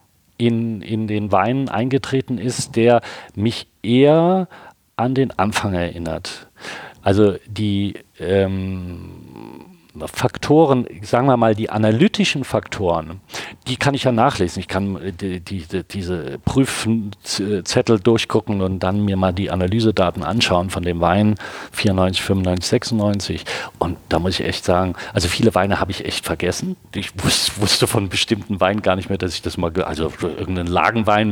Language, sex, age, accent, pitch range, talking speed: German, male, 40-59, German, 95-115 Hz, 150 wpm